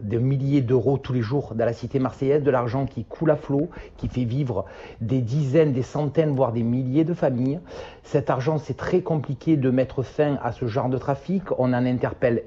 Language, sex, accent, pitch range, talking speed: French, male, French, 125-160 Hz, 210 wpm